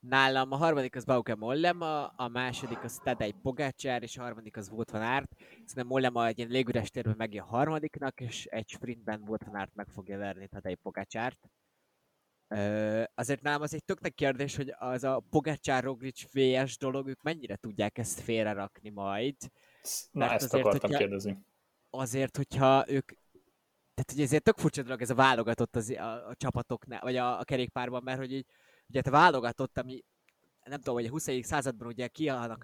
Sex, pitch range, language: male, 115-135 Hz, Hungarian